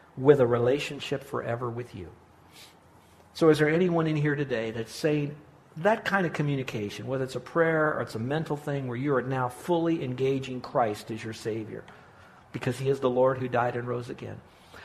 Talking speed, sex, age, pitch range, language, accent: 195 wpm, male, 50-69, 115-150 Hz, English, American